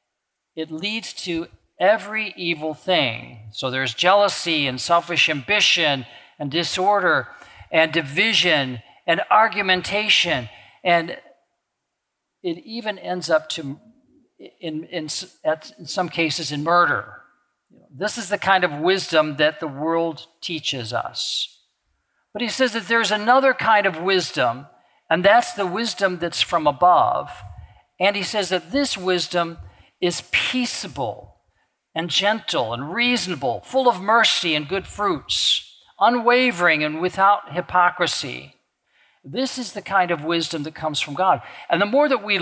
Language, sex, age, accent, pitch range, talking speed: English, male, 50-69, American, 155-215 Hz, 135 wpm